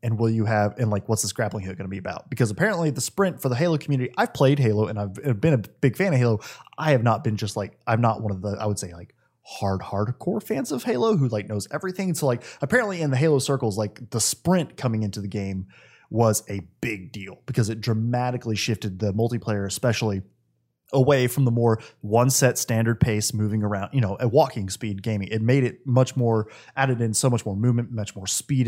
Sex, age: male, 20-39